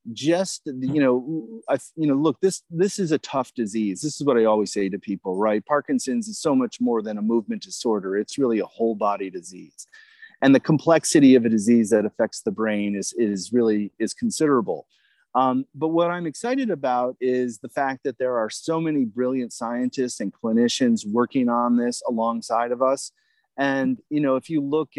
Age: 30-49